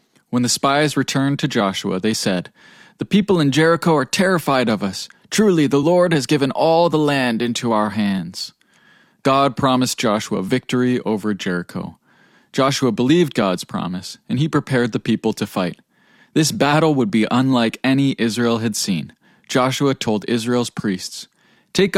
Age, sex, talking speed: 20-39, male, 160 wpm